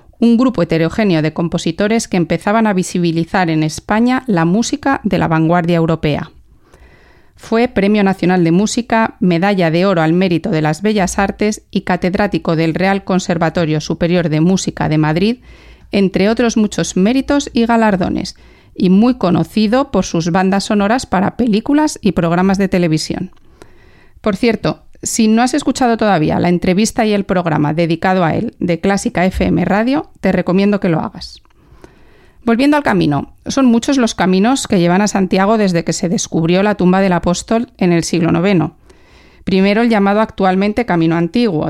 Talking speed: 165 wpm